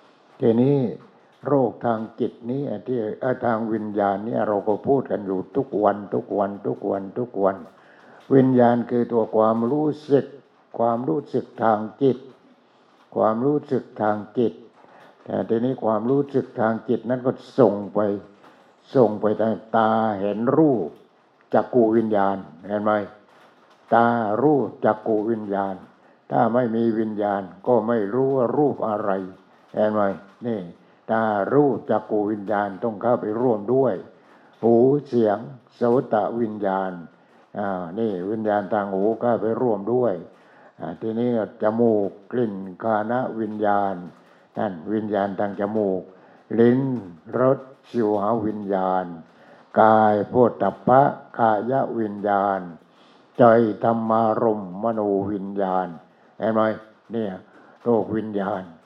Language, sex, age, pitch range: English, male, 60-79, 100-120 Hz